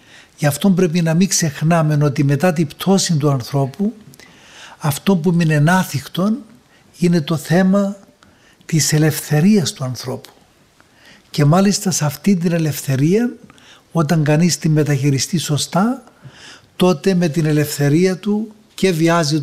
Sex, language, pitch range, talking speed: male, Greek, 145-180 Hz, 125 wpm